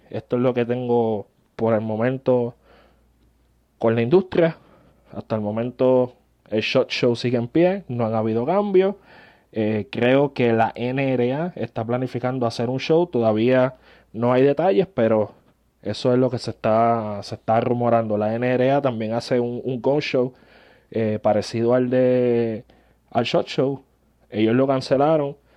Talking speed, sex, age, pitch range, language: 155 wpm, male, 20-39, 110-130 Hz, Spanish